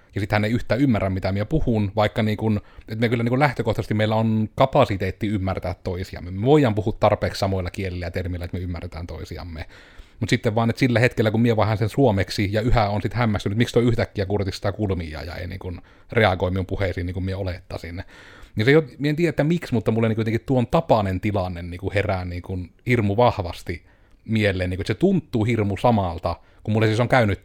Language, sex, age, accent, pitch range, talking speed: Finnish, male, 30-49, native, 95-120 Hz, 215 wpm